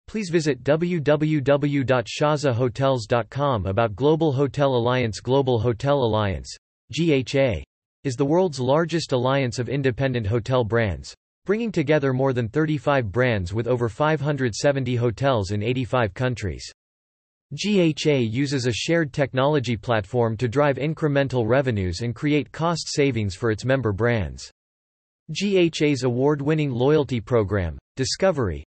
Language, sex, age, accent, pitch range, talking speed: English, male, 40-59, American, 115-150 Hz, 115 wpm